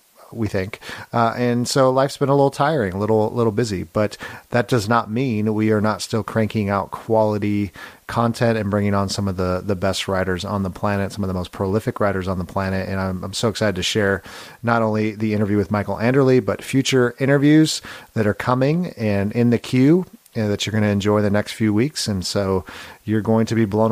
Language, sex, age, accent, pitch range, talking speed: English, male, 40-59, American, 100-120 Hz, 225 wpm